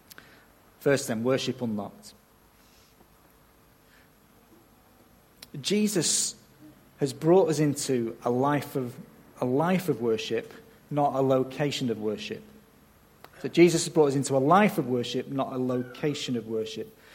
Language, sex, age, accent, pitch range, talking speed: English, male, 40-59, British, 125-160 Hz, 125 wpm